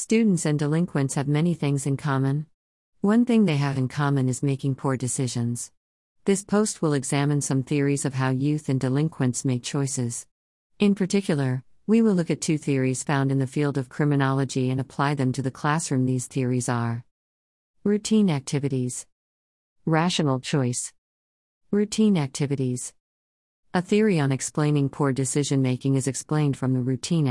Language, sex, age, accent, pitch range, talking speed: English, female, 50-69, American, 130-155 Hz, 155 wpm